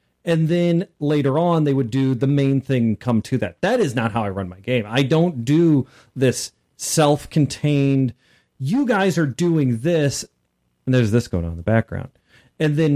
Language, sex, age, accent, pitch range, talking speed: English, male, 40-59, American, 115-155 Hz, 190 wpm